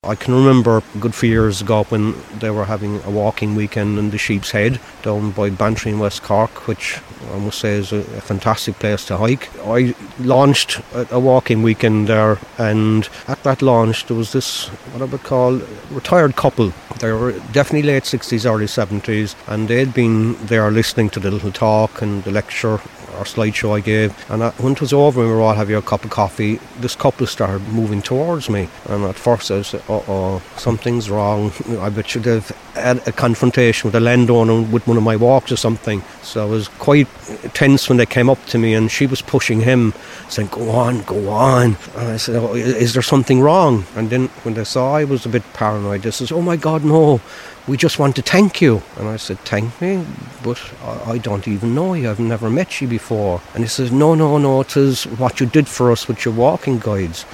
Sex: male